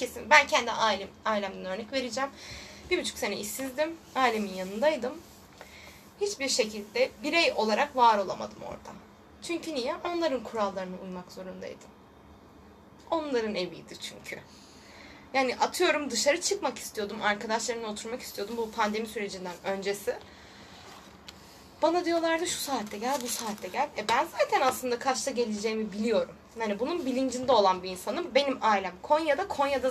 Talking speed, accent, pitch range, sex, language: 130 wpm, native, 210-290 Hz, female, Turkish